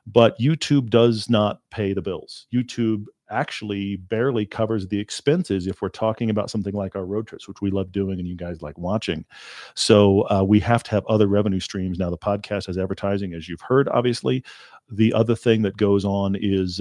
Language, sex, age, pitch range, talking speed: English, male, 40-59, 95-115 Hz, 200 wpm